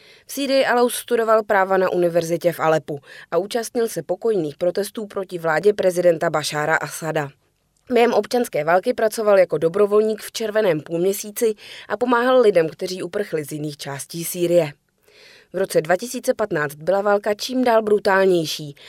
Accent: native